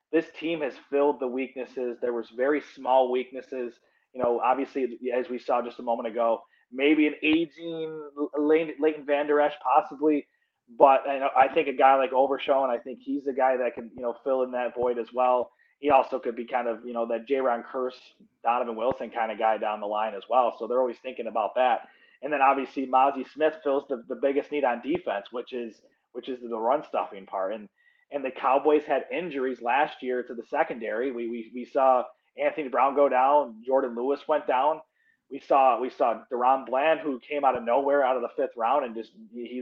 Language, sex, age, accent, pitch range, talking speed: English, male, 30-49, American, 125-145 Hz, 215 wpm